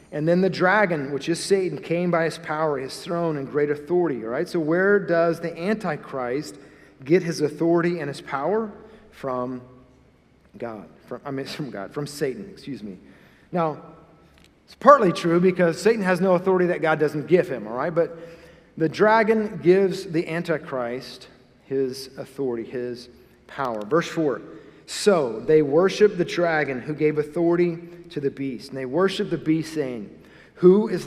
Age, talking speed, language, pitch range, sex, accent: 40-59, 165 wpm, English, 145-175 Hz, male, American